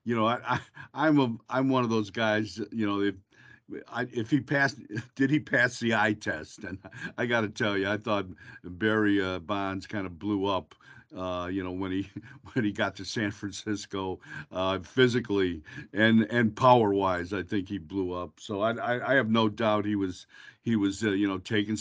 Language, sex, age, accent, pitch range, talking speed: English, male, 50-69, American, 100-125 Hz, 210 wpm